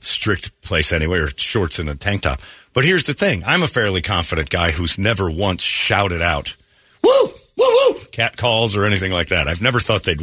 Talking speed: 210 wpm